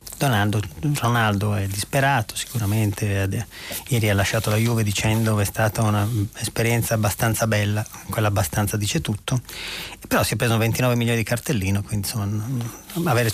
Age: 30-49